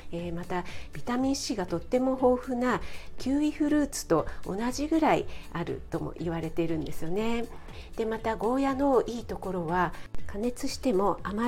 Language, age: Japanese, 50-69